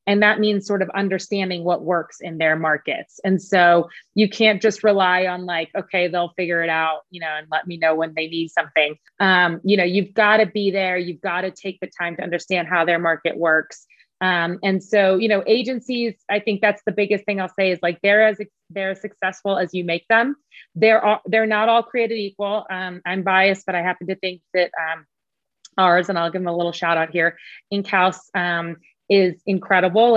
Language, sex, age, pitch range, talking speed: English, female, 30-49, 175-205 Hz, 220 wpm